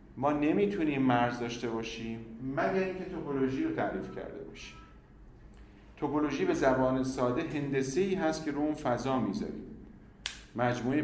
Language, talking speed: Persian, 135 wpm